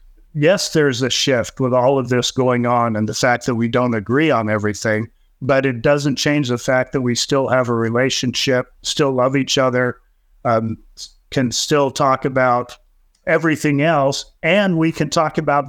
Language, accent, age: English, American, 50-69